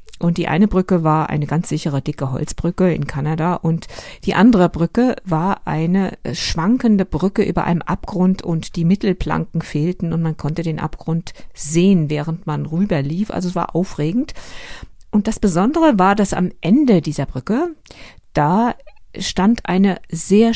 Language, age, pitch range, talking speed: German, 50-69, 160-215 Hz, 160 wpm